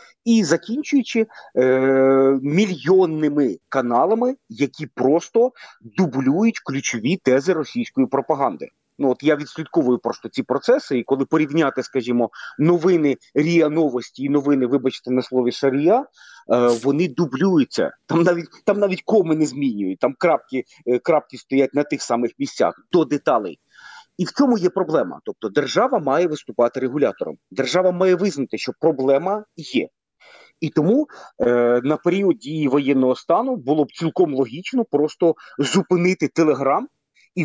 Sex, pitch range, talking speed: male, 130-180 Hz, 135 wpm